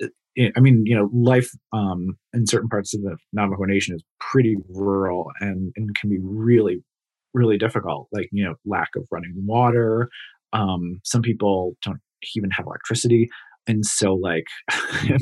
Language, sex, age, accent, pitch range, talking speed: English, male, 20-39, American, 95-115 Hz, 160 wpm